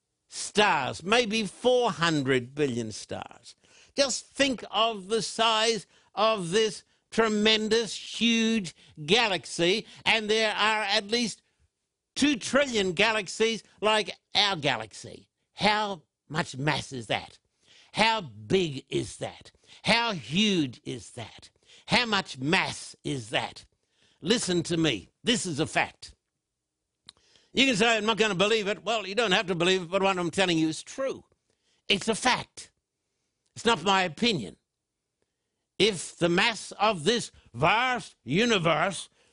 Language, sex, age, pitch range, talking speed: English, male, 60-79, 175-230 Hz, 135 wpm